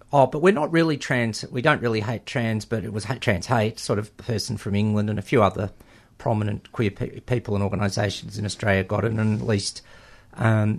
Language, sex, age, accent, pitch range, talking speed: English, male, 50-69, Australian, 105-125 Hz, 210 wpm